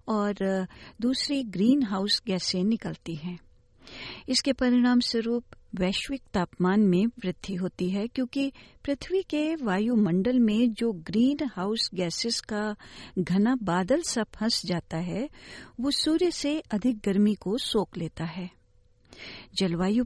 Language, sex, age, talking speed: Hindi, female, 50-69, 125 wpm